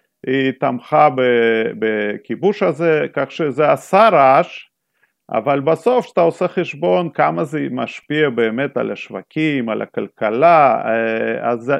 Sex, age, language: male, 40-59, Hebrew